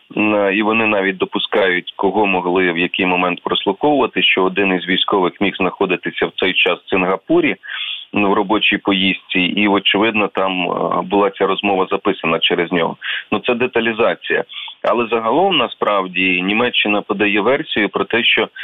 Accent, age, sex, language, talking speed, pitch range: native, 30-49, male, Ukrainian, 145 wpm, 95-115 Hz